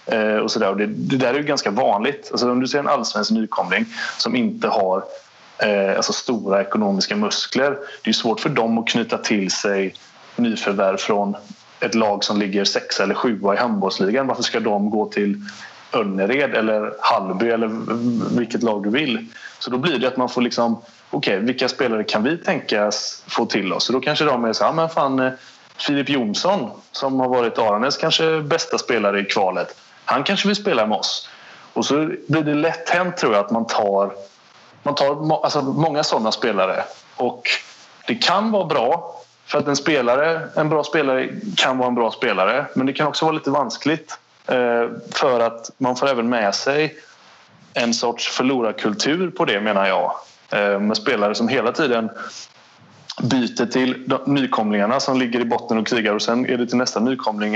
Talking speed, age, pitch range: 180 wpm, 30-49, 105-145 Hz